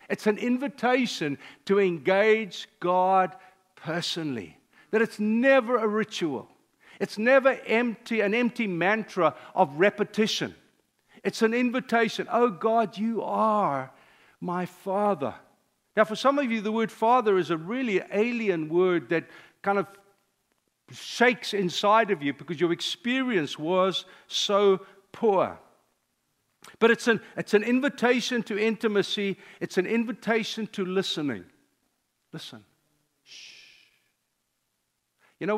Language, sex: English, male